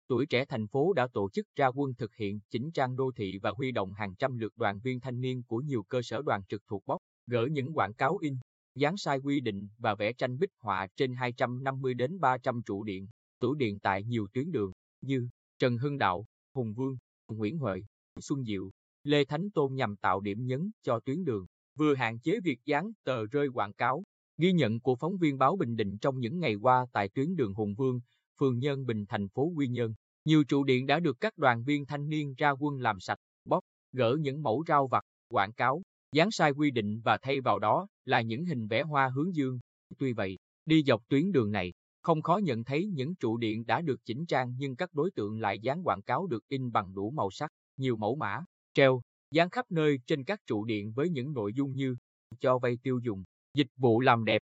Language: Vietnamese